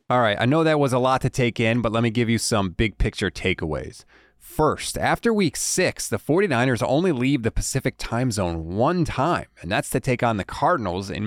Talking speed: 225 wpm